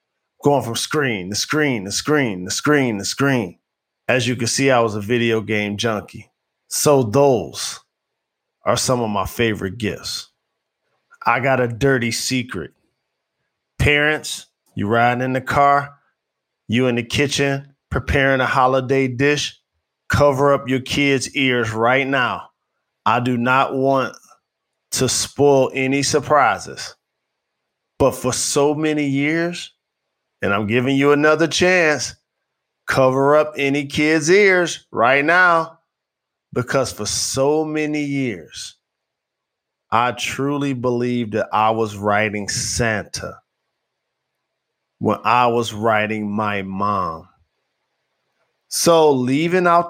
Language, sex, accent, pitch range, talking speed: English, male, American, 115-145 Hz, 125 wpm